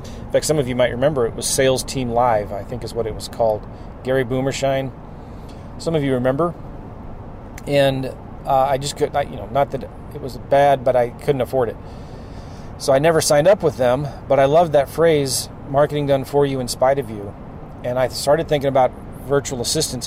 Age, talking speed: 30-49, 210 wpm